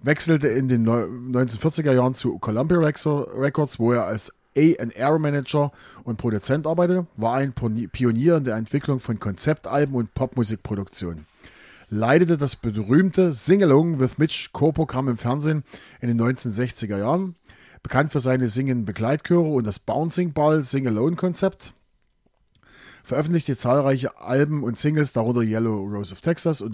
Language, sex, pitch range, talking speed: German, male, 115-150 Hz, 135 wpm